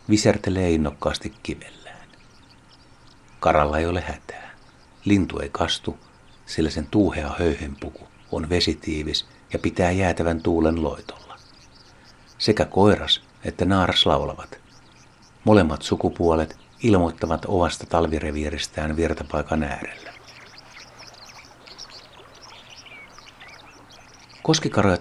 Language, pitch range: Finnish, 75-95 Hz